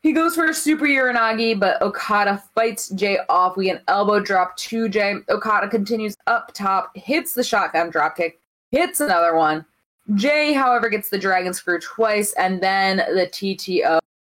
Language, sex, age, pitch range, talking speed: English, female, 20-39, 175-230 Hz, 165 wpm